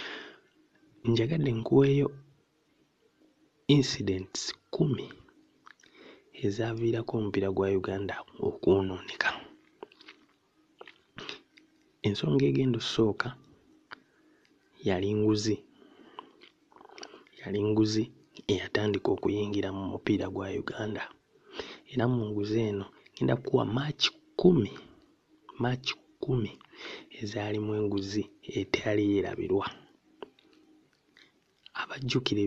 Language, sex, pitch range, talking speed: English, male, 100-140 Hz, 85 wpm